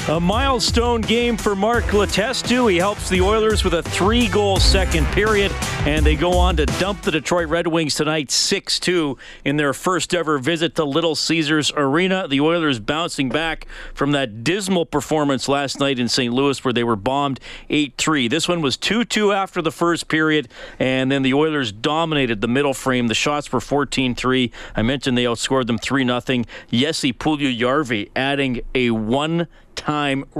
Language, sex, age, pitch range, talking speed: English, male, 40-59, 125-160 Hz, 170 wpm